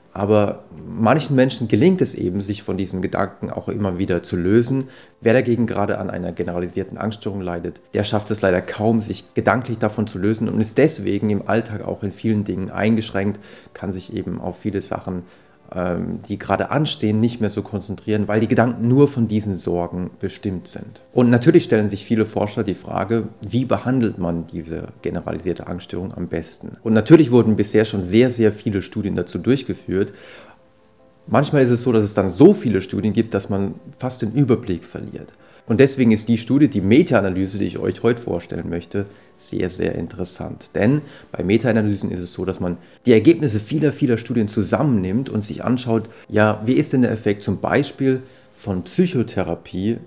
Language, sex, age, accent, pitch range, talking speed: German, male, 30-49, German, 95-120 Hz, 180 wpm